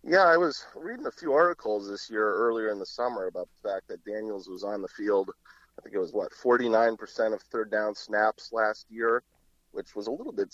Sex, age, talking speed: male, 30-49, 220 wpm